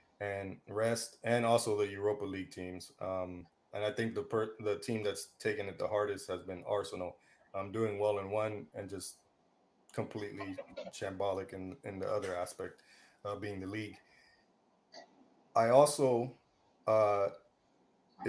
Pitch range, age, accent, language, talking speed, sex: 100-125 Hz, 20-39, American, English, 150 wpm, male